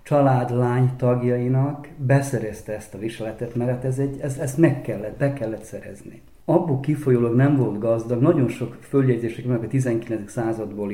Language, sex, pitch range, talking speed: Hungarian, male, 110-140 Hz, 155 wpm